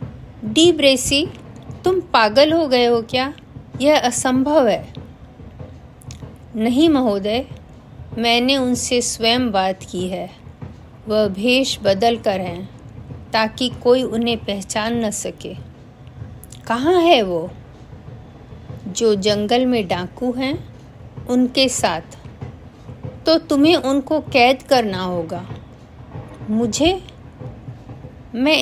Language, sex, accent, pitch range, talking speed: Hindi, female, native, 195-265 Hz, 100 wpm